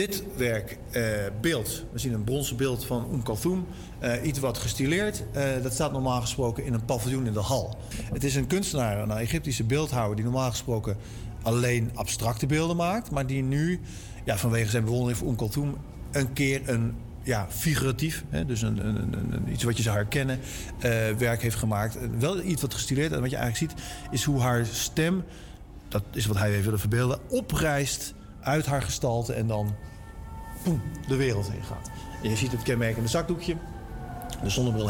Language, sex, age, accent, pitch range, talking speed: Dutch, male, 40-59, Dutch, 110-140 Hz, 185 wpm